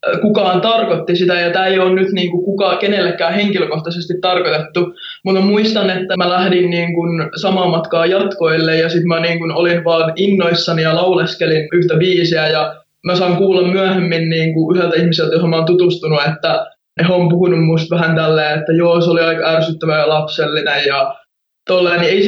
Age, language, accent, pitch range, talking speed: 20-39, Finnish, native, 165-195 Hz, 165 wpm